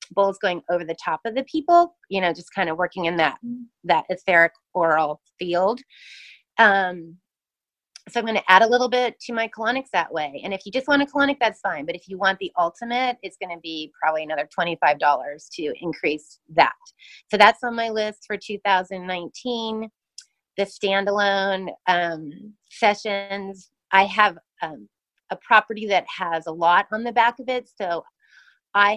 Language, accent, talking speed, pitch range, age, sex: English, American, 180 wpm, 175-230 Hz, 30-49, female